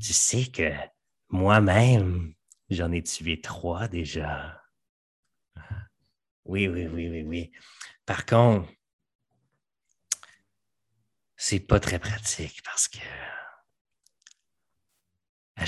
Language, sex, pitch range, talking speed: French, male, 85-105 Hz, 90 wpm